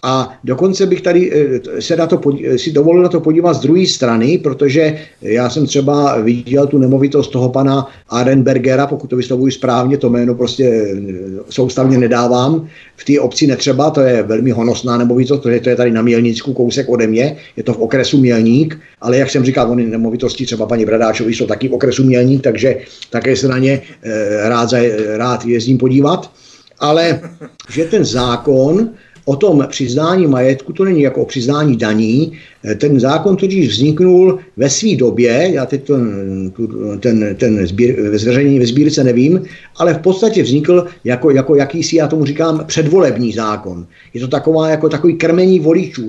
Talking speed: 170 wpm